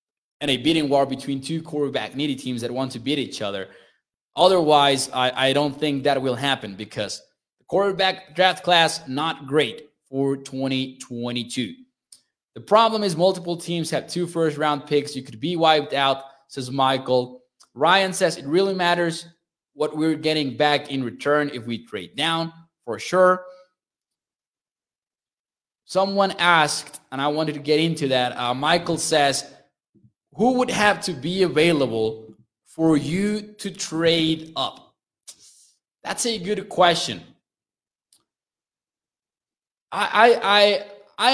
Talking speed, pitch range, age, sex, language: 140 wpm, 135-180 Hz, 20-39, male, English